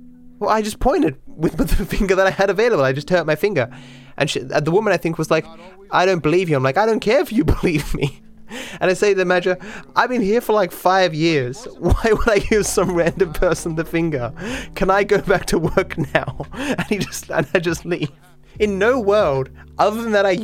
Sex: male